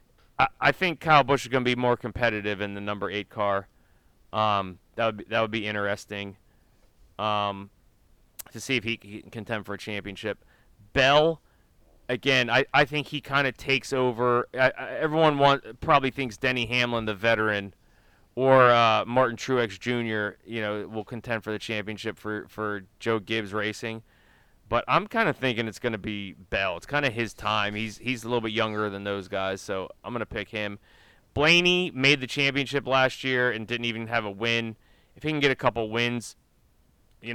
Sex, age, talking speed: male, 30-49, 190 wpm